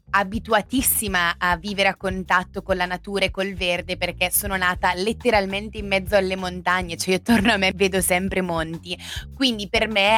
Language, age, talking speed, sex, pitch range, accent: Italian, 20-39, 175 wpm, female, 170-200 Hz, native